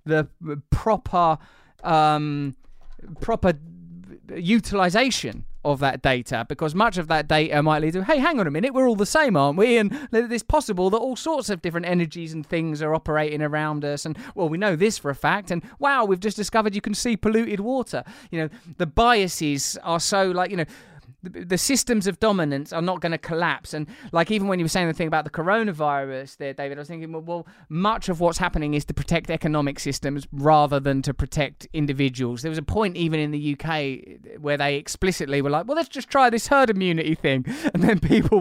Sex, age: male, 20-39